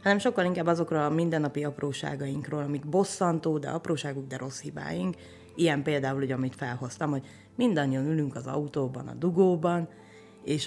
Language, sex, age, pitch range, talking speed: Hungarian, female, 30-49, 135-165 Hz, 145 wpm